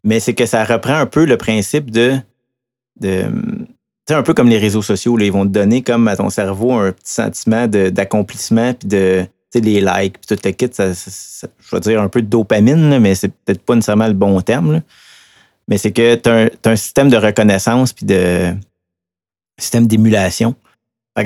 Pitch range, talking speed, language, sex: 100-120 Hz, 225 wpm, French, male